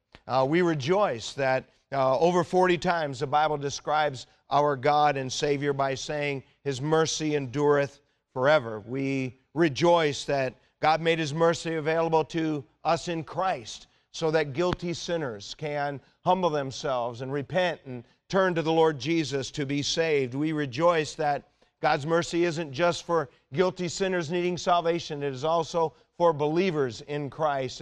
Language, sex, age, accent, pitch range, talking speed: English, male, 40-59, American, 135-160 Hz, 150 wpm